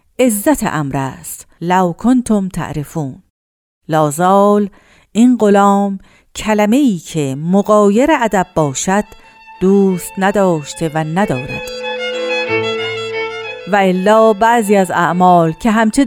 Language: Persian